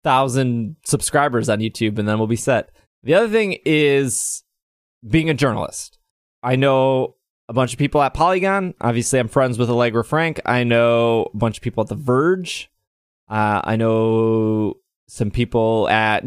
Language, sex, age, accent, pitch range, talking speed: English, male, 20-39, American, 115-145 Hz, 165 wpm